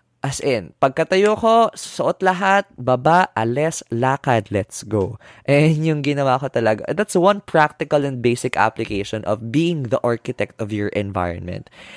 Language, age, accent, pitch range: Filipino, 20-39, native, 115-155 Hz